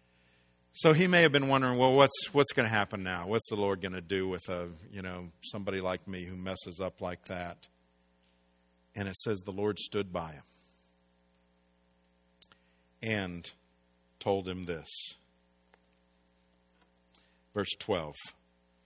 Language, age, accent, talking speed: English, 50-69, American, 145 wpm